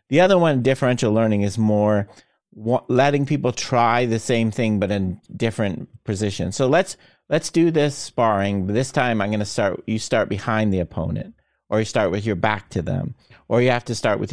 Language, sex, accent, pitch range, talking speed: English, male, American, 100-130 Hz, 200 wpm